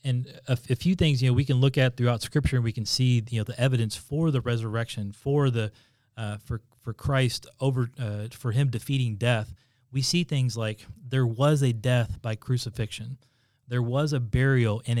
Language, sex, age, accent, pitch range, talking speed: English, male, 30-49, American, 110-130 Hz, 205 wpm